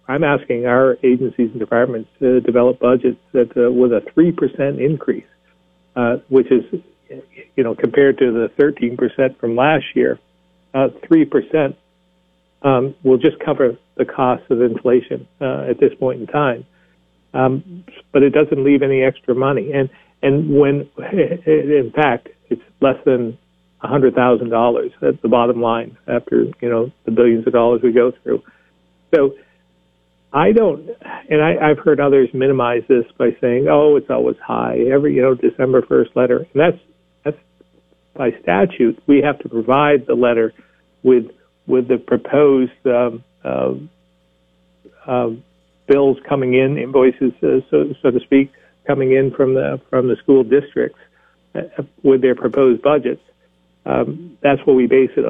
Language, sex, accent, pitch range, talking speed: English, male, American, 115-140 Hz, 155 wpm